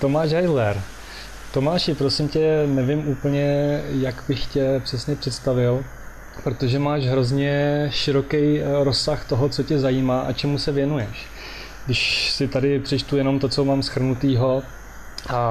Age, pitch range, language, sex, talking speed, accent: 20-39, 125-140 Hz, Czech, male, 135 wpm, native